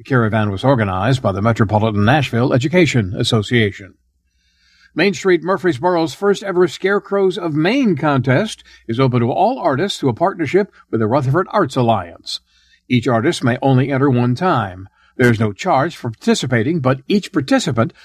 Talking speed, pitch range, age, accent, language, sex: 160 wpm, 115-170 Hz, 60-79, American, English, male